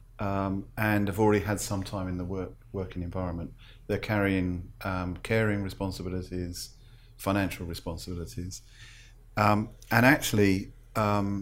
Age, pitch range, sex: 50-69, 95-115 Hz, male